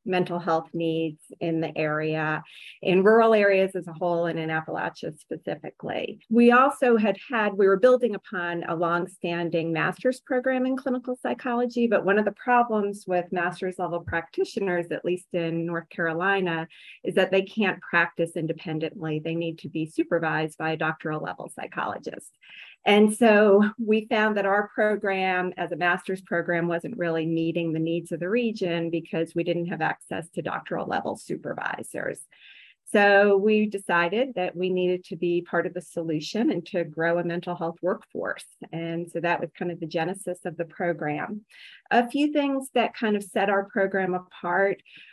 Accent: American